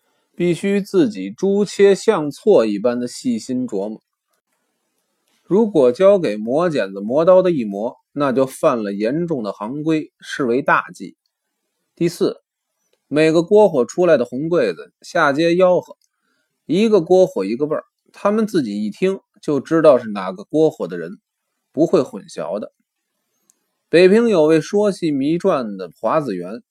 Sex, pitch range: male, 150-205 Hz